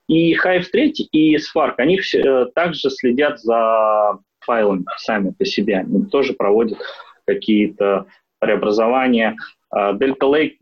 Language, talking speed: Russian, 115 wpm